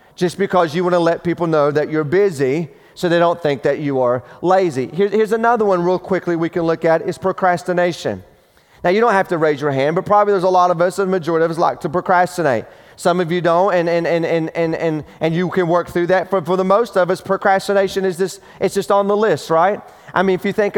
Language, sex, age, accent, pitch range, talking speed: English, male, 30-49, American, 160-195 Hz, 255 wpm